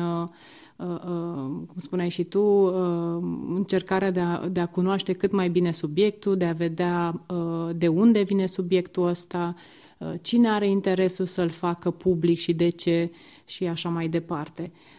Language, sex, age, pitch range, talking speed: Romanian, female, 30-49, 170-195 Hz, 135 wpm